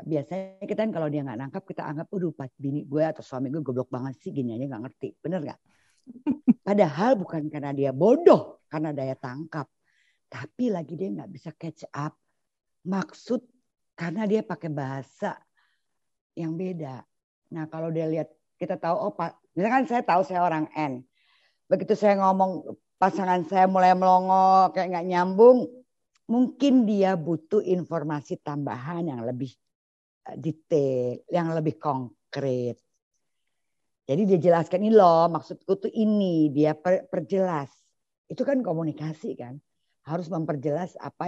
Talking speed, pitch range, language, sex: 145 wpm, 145-190 Hz, Indonesian, female